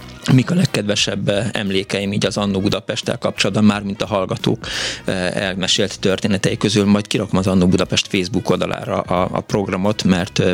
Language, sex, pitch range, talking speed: Hungarian, male, 100-115 Hz, 155 wpm